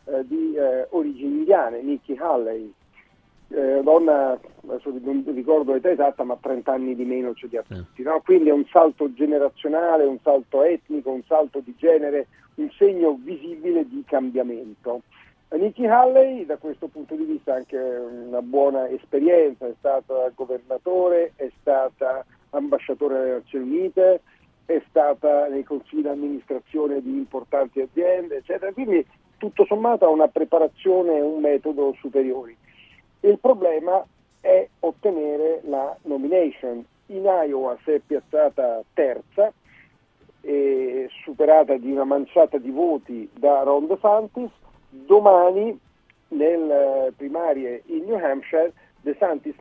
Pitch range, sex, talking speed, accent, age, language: 135-200 Hz, male, 130 wpm, native, 50-69, Italian